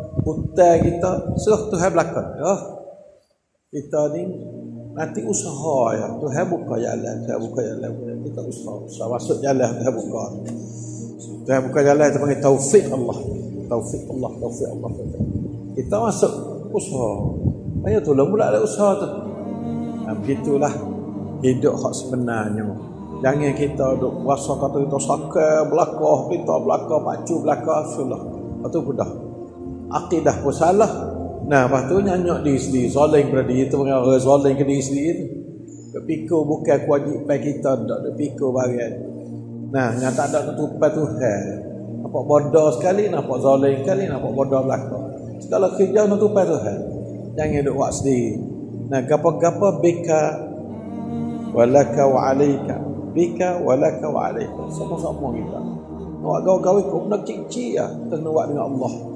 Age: 50-69